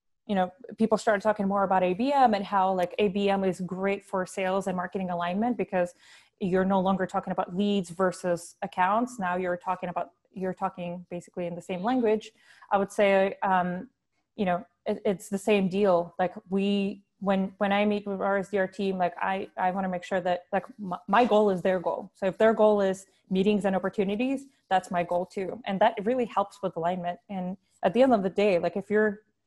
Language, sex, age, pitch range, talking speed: English, female, 20-39, 185-215 Hz, 210 wpm